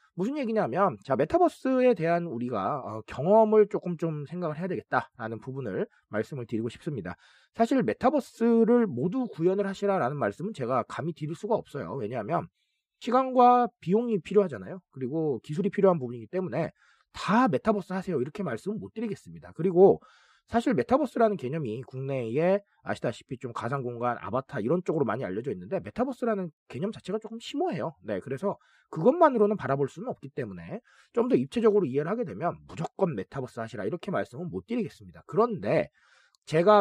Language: Korean